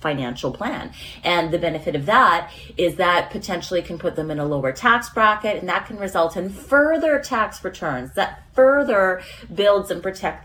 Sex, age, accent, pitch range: female, 30-49, American, 155-210 Hz